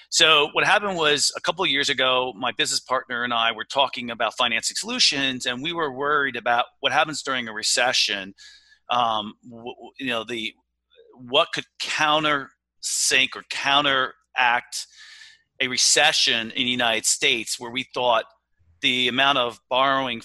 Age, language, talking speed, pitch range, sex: 40-59, English, 155 wpm, 120-155 Hz, male